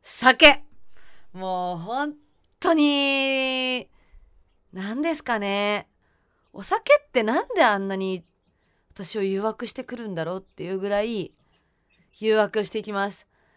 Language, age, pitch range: Japanese, 20-39, 170-245 Hz